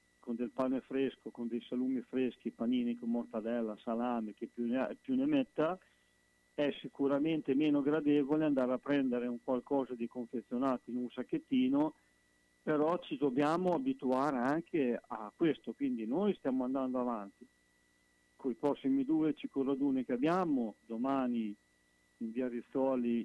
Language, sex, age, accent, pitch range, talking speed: Italian, male, 50-69, native, 115-140 Hz, 140 wpm